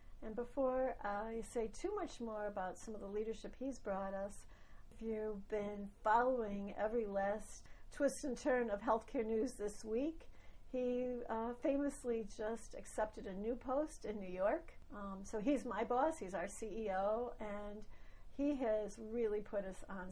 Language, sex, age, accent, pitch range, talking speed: English, female, 60-79, American, 195-240 Hz, 160 wpm